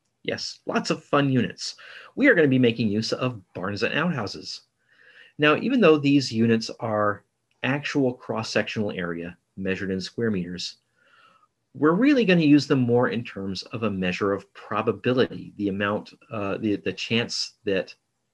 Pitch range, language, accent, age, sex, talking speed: 105-135 Hz, English, American, 40-59, male, 155 wpm